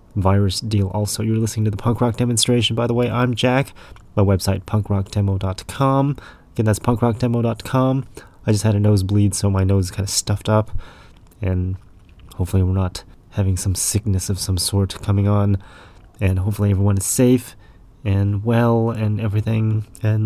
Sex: male